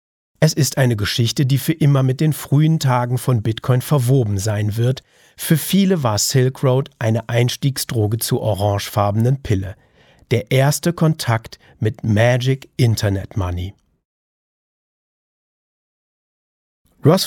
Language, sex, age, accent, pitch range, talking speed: German, male, 40-59, German, 110-135 Hz, 120 wpm